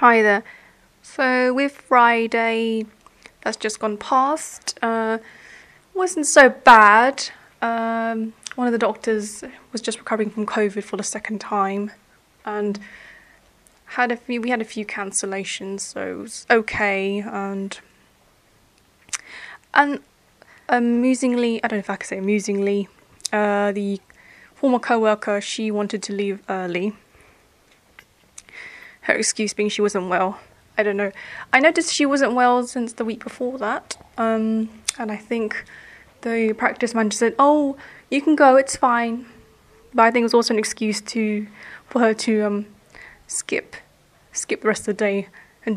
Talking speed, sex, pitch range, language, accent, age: 150 wpm, female, 210-245 Hz, English, British, 10-29